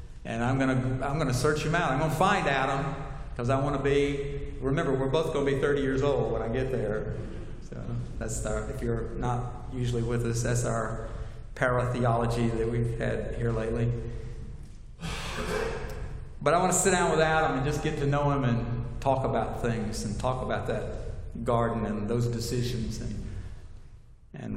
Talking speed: 205 wpm